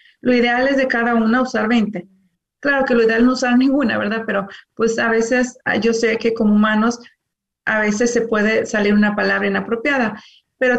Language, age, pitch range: Spanish, 30-49, 220-255 Hz